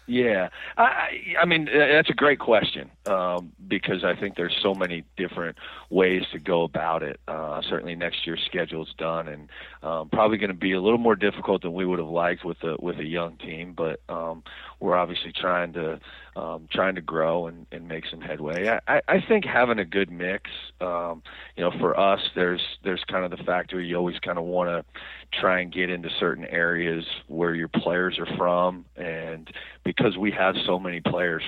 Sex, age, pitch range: male, 40-59, 80-90 Hz